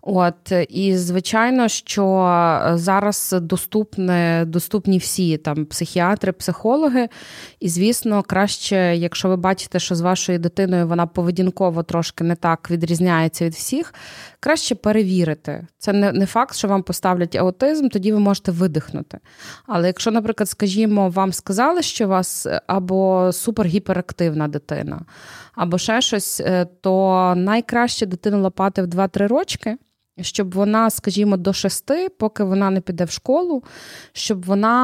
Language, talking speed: Ukrainian, 135 wpm